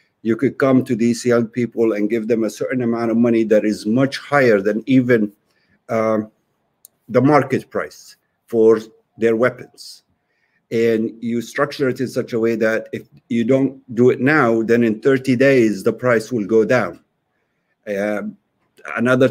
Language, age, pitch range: Turkish, 50-69, 115-150 Hz